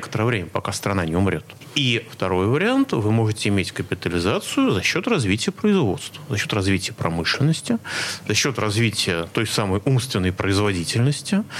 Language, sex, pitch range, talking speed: Russian, male, 110-170 Hz, 145 wpm